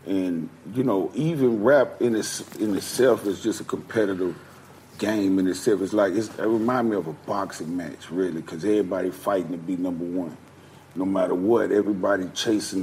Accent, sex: American, male